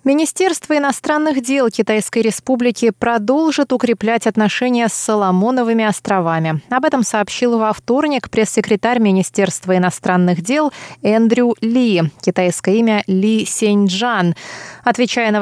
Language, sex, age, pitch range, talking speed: Russian, female, 20-39, 185-245 Hz, 110 wpm